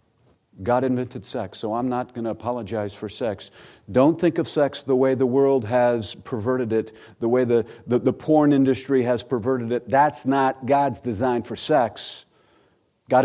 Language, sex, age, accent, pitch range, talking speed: English, male, 50-69, American, 110-130 Hz, 175 wpm